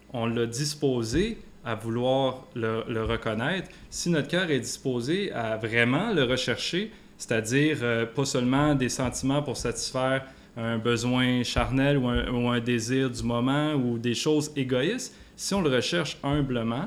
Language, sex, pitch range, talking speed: French, male, 120-150 Hz, 155 wpm